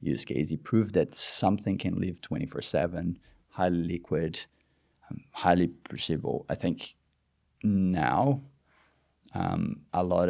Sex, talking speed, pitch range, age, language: male, 105 wpm, 70-90 Hz, 30-49, English